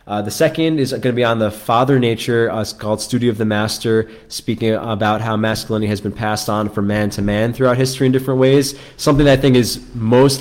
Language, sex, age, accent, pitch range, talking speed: English, male, 20-39, American, 100-120 Hz, 235 wpm